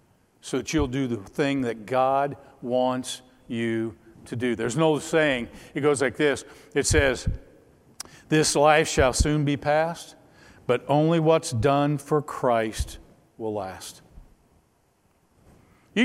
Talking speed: 140 wpm